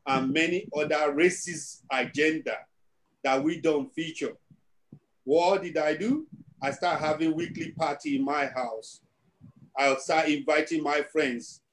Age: 50-69